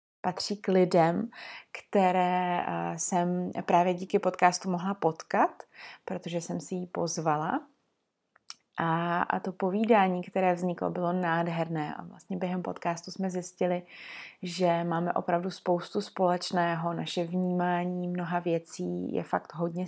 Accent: native